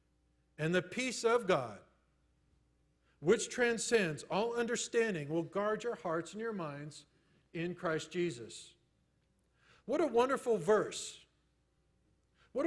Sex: male